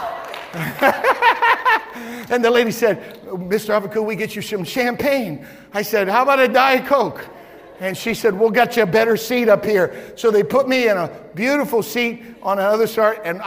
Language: English